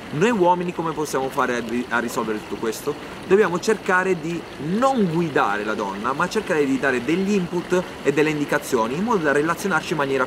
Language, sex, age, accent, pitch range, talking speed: Italian, male, 30-49, native, 125-180 Hz, 180 wpm